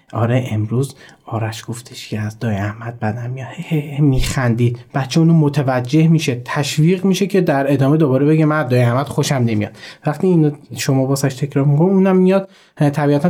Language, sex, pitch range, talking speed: Persian, male, 125-160 Hz, 160 wpm